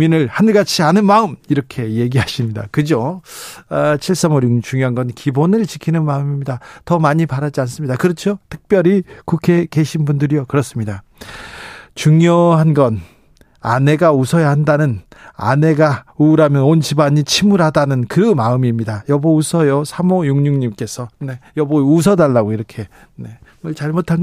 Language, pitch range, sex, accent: Korean, 135-175 Hz, male, native